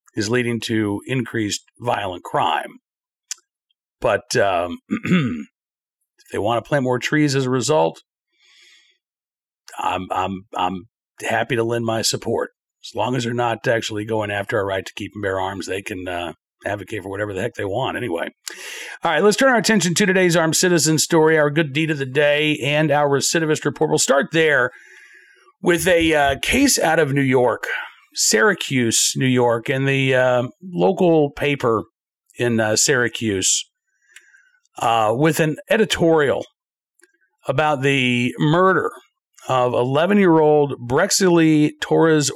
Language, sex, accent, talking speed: English, male, American, 150 wpm